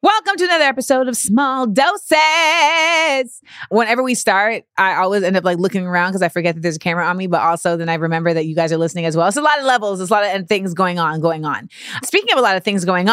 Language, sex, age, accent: English, female, 30-49, American